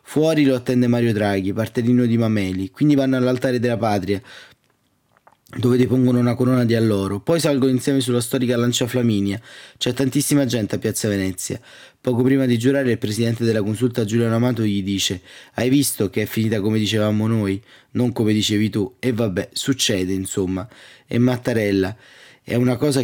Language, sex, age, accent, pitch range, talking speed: Italian, male, 20-39, native, 105-125 Hz, 170 wpm